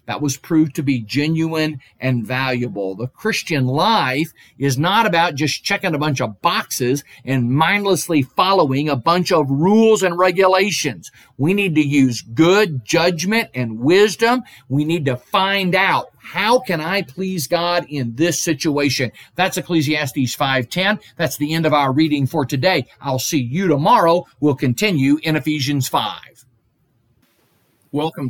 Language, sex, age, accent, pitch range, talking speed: English, male, 50-69, American, 130-170 Hz, 150 wpm